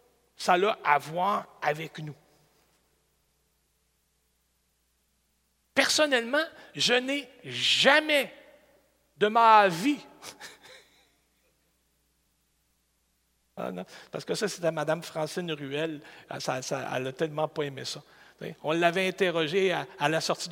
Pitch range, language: 130-210 Hz, French